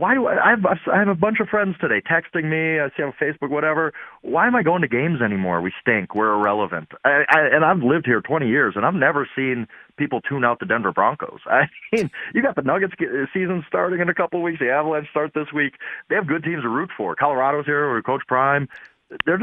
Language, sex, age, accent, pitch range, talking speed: English, male, 30-49, American, 130-180 Hz, 245 wpm